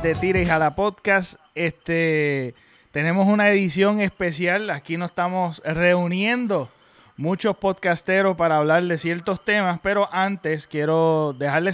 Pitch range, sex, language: 150-180 Hz, male, Spanish